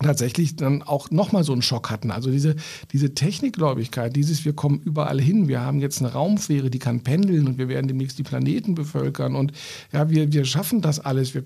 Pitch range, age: 130-150 Hz, 50-69